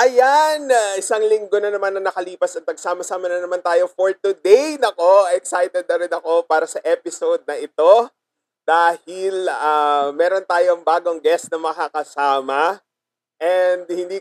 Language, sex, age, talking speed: Filipino, male, 30-49, 145 wpm